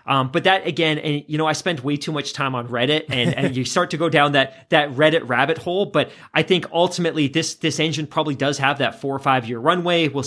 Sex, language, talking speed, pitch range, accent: male, English, 255 wpm, 130-160 Hz, American